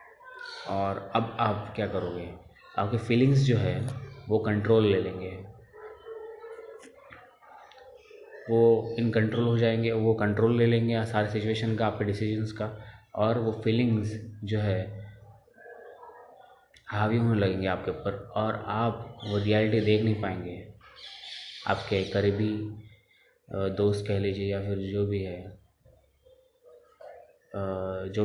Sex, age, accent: male, 20-39, native